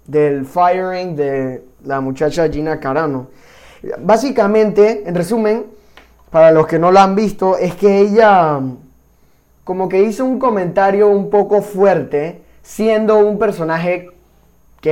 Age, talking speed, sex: 20-39, 130 wpm, male